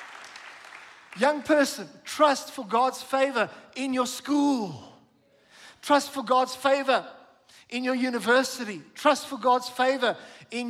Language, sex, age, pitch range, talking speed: English, male, 50-69, 210-260 Hz, 120 wpm